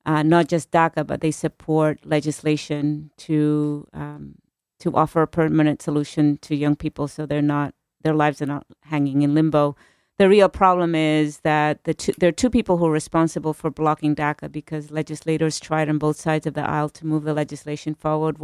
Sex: female